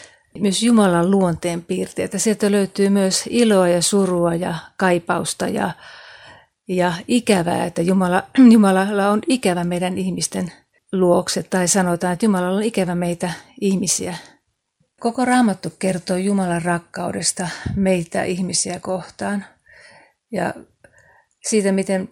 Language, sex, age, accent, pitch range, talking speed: Finnish, female, 30-49, native, 175-205 Hz, 115 wpm